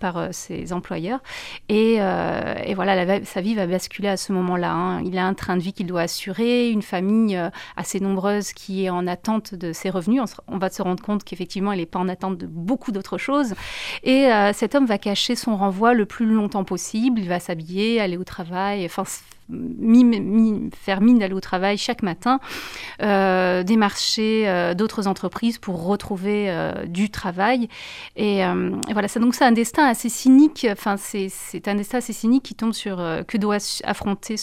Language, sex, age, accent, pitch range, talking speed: English, female, 30-49, French, 190-225 Hz, 205 wpm